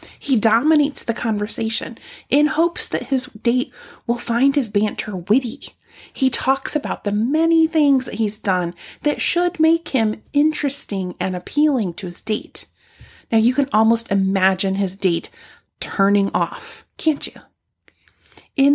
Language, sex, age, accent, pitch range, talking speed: English, female, 30-49, American, 210-295 Hz, 145 wpm